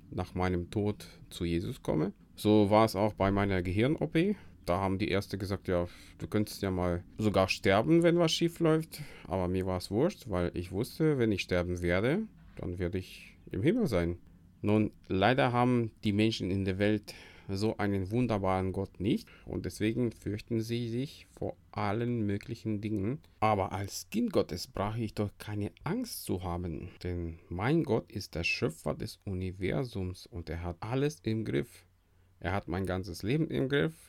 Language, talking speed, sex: German, 180 wpm, male